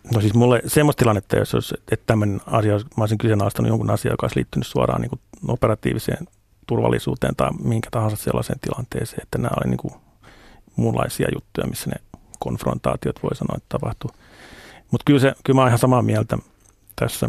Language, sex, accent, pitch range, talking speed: Finnish, male, native, 95-120 Hz, 165 wpm